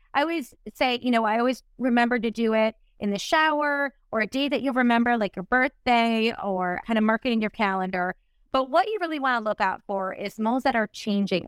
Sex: female